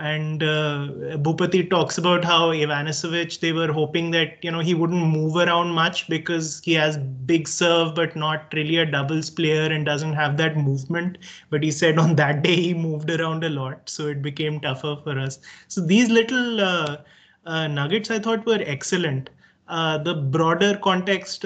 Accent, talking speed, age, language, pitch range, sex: Indian, 180 wpm, 20-39, English, 155-185 Hz, male